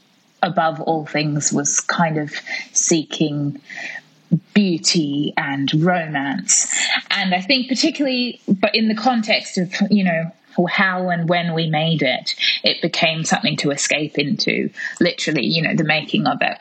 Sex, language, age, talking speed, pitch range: female, English, 20-39, 145 wpm, 155-220 Hz